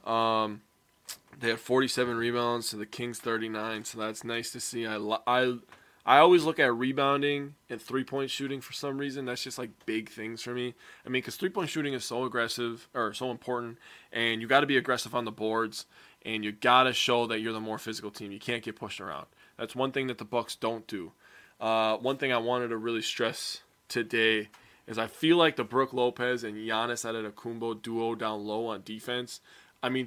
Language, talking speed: English, 215 wpm